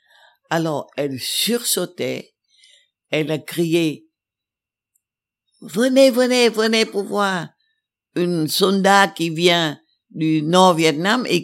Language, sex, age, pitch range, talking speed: French, female, 60-79, 155-195 Hz, 100 wpm